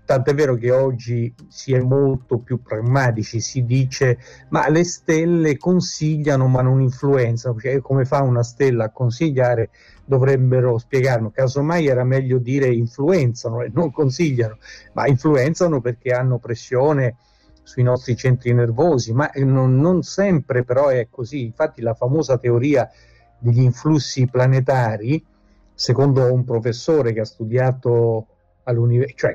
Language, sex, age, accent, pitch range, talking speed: Italian, male, 50-69, native, 120-145 Hz, 135 wpm